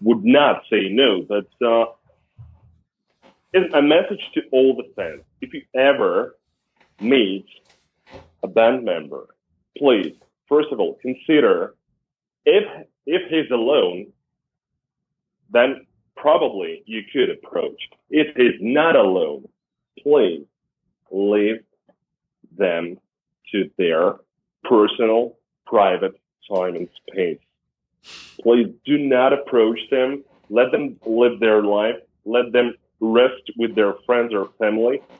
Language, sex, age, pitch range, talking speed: English, male, 40-59, 110-150 Hz, 115 wpm